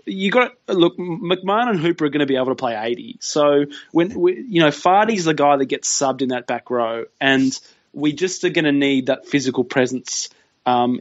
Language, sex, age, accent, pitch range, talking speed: English, male, 20-39, Australian, 135-165 Hz, 225 wpm